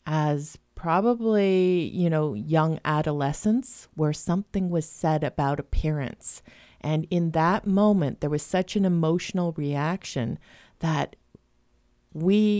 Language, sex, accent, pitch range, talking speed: English, female, American, 155-200 Hz, 115 wpm